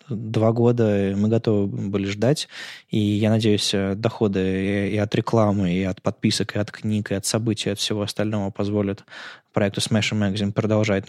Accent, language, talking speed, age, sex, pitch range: native, Russian, 180 wpm, 20-39, male, 100-115 Hz